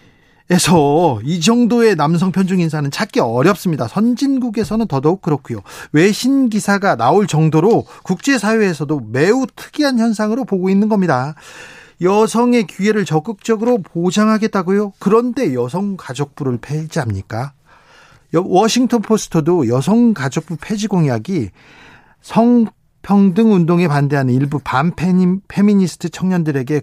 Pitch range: 155-220 Hz